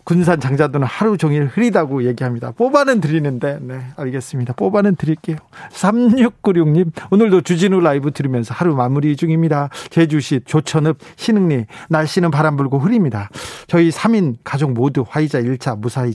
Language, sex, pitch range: Korean, male, 140-180 Hz